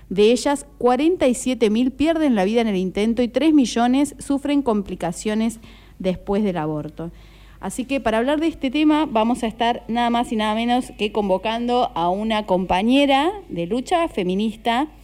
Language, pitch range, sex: Spanish, 190-255 Hz, female